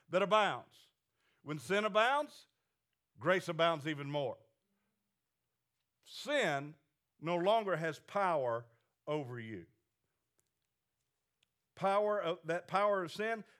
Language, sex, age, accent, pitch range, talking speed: English, male, 50-69, American, 150-200 Hz, 95 wpm